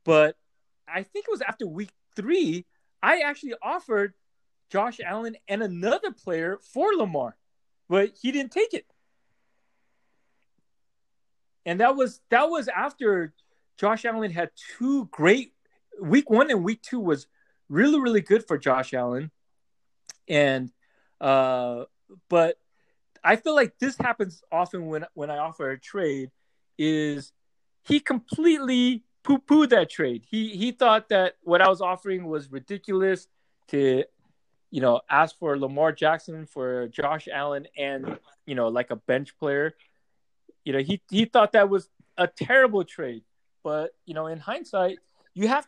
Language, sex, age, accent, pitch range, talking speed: English, male, 30-49, American, 155-225 Hz, 145 wpm